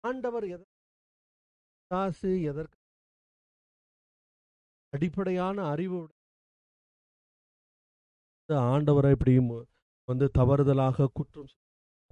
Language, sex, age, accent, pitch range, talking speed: Tamil, male, 40-59, native, 130-175 Hz, 55 wpm